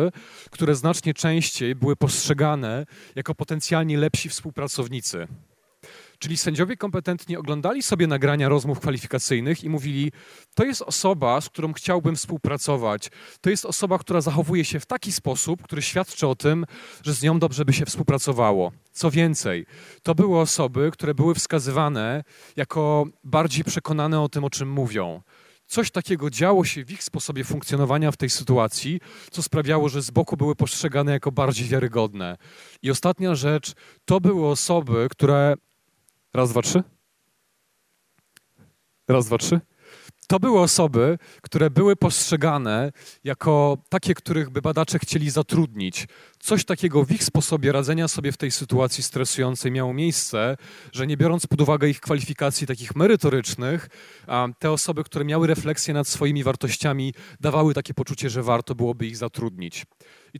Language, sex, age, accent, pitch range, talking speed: Polish, male, 30-49, native, 135-165 Hz, 145 wpm